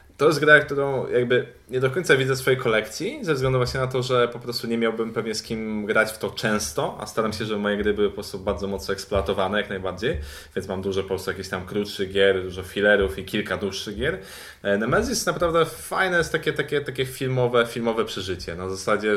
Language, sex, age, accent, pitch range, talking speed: Polish, male, 20-39, native, 100-130 Hz, 225 wpm